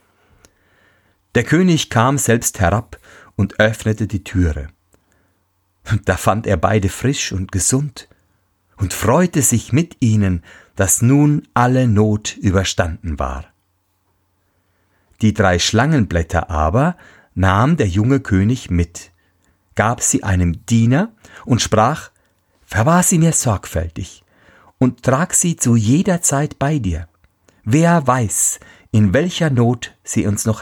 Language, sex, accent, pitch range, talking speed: German, male, German, 90-115 Hz, 125 wpm